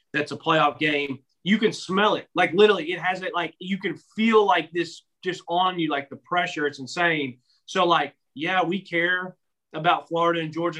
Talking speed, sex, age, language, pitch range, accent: 200 wpm, male, 30-49, English, 135-170 Hz, American